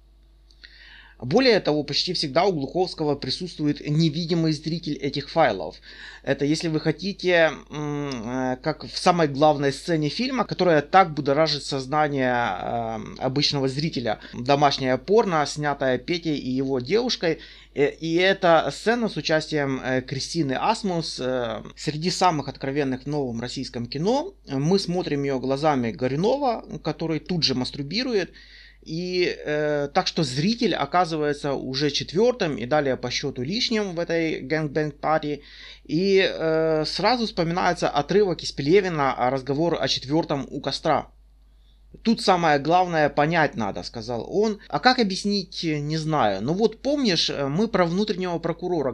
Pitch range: 135-180 Hz